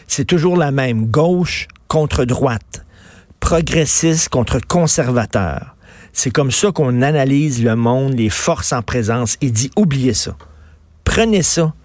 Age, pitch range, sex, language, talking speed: 50-69, 130-165 Hz, male, French, 135 wpm